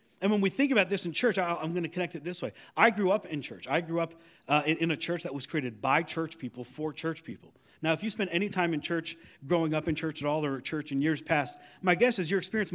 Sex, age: male, 40-59